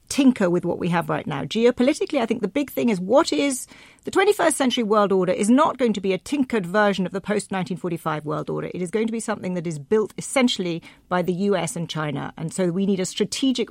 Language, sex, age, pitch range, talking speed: English, female, 40-59, 185-245 Hz, 245 wpm